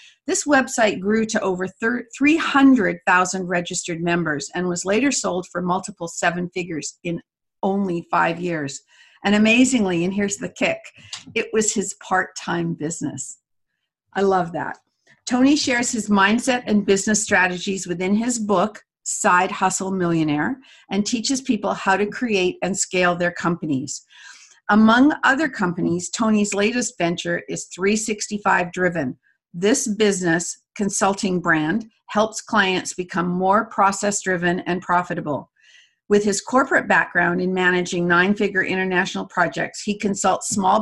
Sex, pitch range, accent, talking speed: female, 175-215 Hz, American, 135 wpm